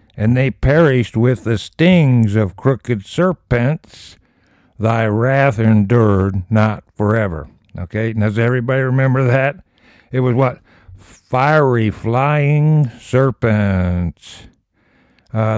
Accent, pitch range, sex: American, 110-130 Hz, male